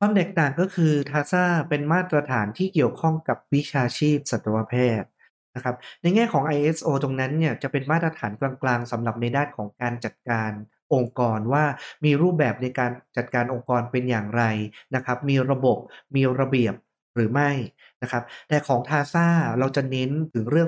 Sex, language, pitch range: male, Thai, 120-155 Hz